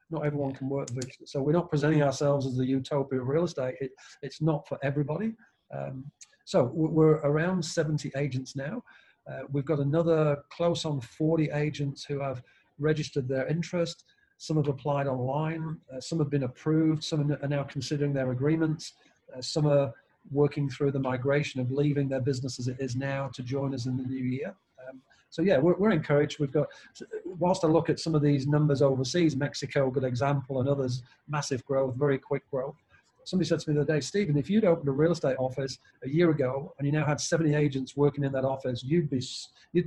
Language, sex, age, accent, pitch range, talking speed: English, male, 40-59, British, 135-155 Hz, 205 wpm